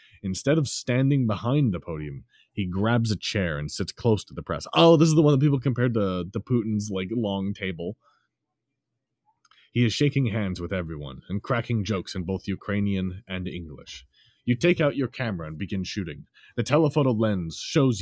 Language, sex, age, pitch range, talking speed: English, male, 30-49, 85-120 Hz, 185 wpm